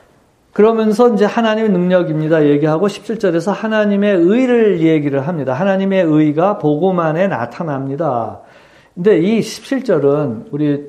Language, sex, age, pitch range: Korean, male, 50-69, 140-190 Hz